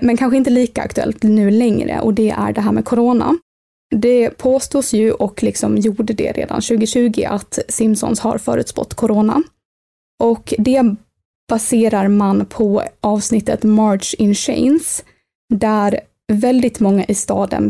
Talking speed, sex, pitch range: 140 wpm, female, 210-245 Hz